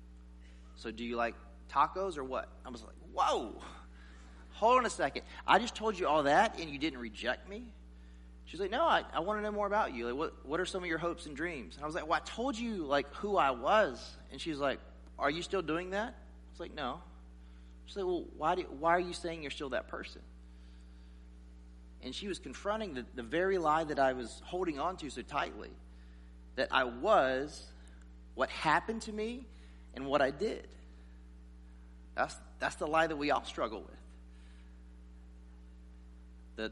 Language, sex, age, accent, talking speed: English, male, 30-49, American, 195 wpm